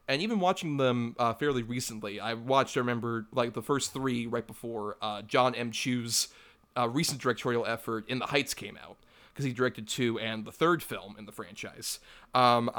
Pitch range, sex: 115-135 Hz, male